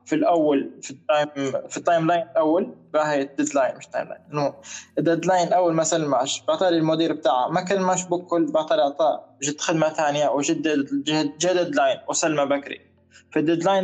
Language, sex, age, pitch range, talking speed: Arabic, male, 20-39, 150-185 Hz, 175 wpm